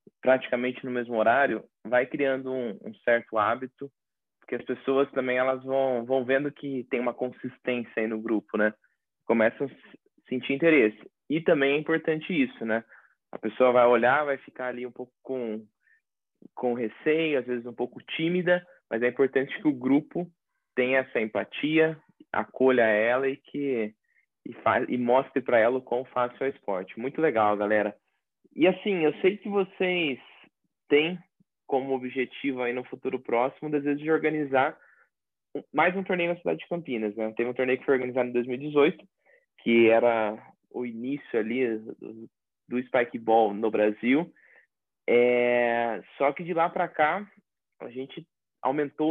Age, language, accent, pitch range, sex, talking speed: 20-39, Portuguese, Brazilian, 120-145 Hz, male, 165 wpm